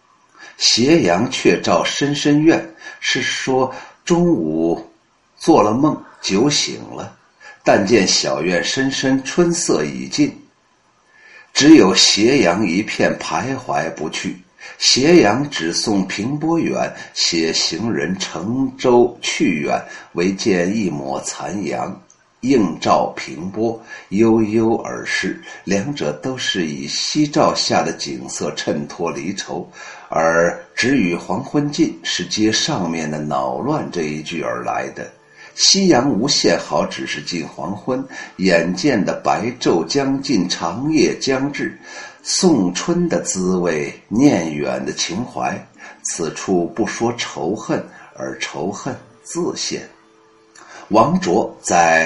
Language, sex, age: Chinese, male, 60-79